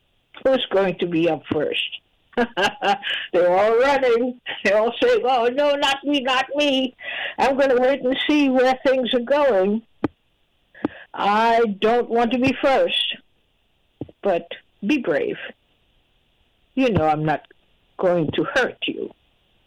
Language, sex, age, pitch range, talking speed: English, female, 60-79, 180-265 Hz, 135 wpm